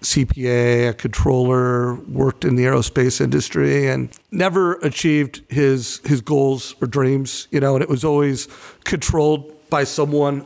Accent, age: American, 50-69